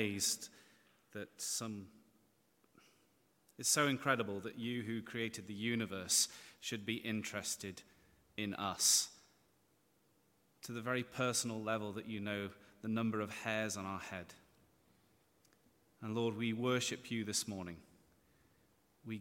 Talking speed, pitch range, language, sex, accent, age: 120 wpm, 105-120 Hz, English, male, British, 30-49